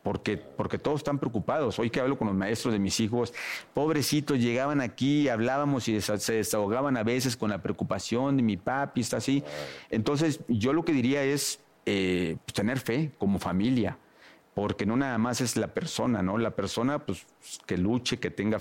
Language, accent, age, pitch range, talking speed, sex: Spanish, Mexican, 50-69, 105-140 Hz, 185 wpm, male